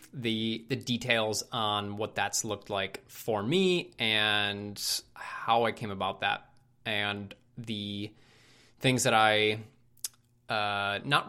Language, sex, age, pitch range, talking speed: English, male, 20-39, 110-135 Hz, 120 wpm